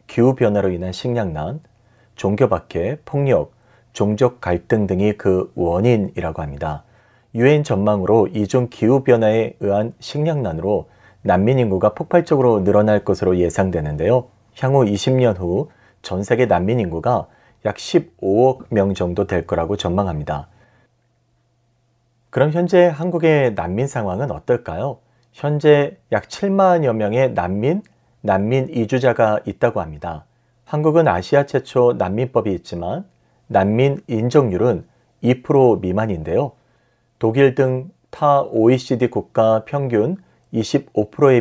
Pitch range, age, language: 100-130 Hz, 40-59, Korean